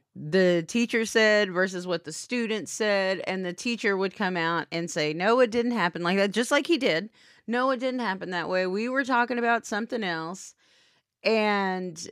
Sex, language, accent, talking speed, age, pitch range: female, English, American, 195 wpm, 30-49, 170-225 Hz